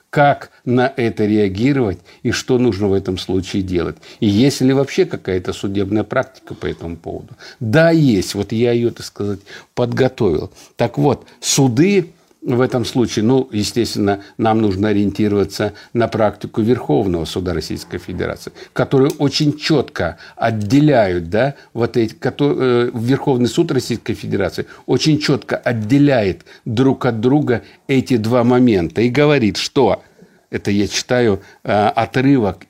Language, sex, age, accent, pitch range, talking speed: Russian, male, 60-79, native, 105-135 Hz, 135 wpm